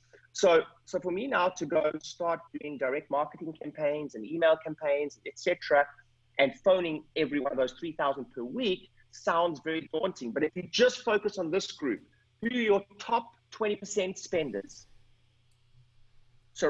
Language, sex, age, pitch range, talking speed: English, male, 30-49, 140-195 Hz, 160 wpm